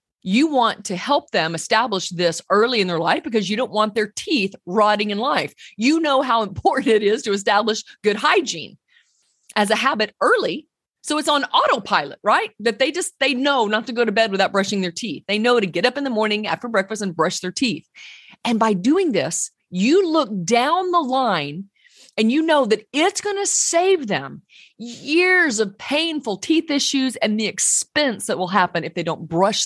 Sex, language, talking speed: female, English, 200 wpm